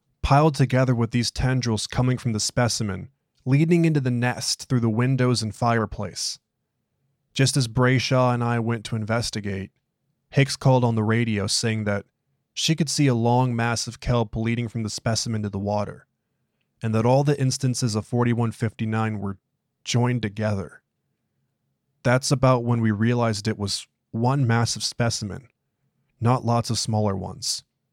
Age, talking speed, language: 20-39, 155 wpm, English